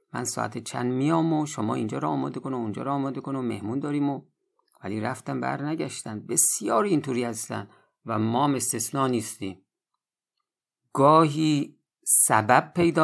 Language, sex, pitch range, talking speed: Persian, male, 110-145 Hz, 135 wpm